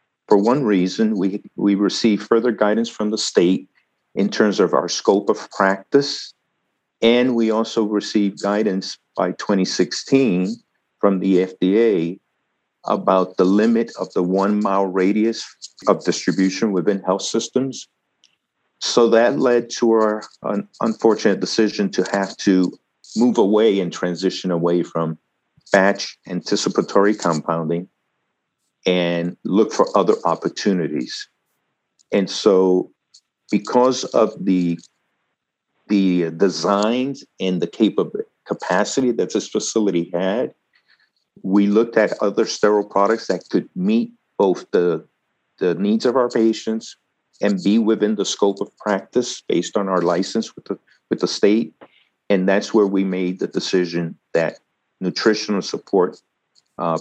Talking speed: 130 wpm